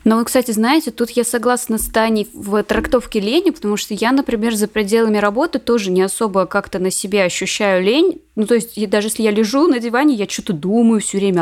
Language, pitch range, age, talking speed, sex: Russian, 175-220 Hz, 20-39, 215 wpm, female